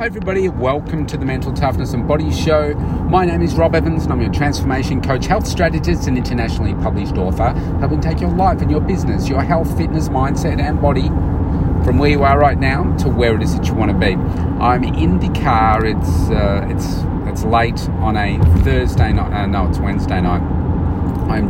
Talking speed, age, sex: 205 wpm, 30-49, male